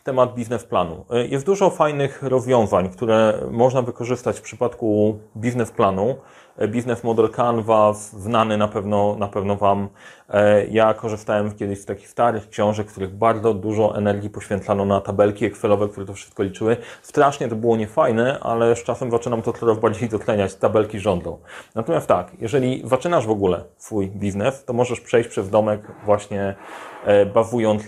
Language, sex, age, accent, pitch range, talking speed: Polish, male, 30-49, native, 105-130 Hz, 155 wpm